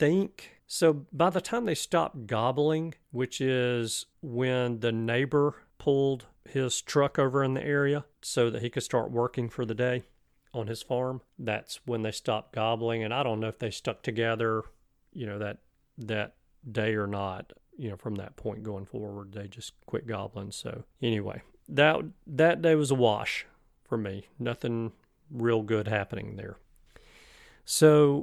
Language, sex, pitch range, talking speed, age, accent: English, male, 110-130 Hz, 170 wpm, 40-59, American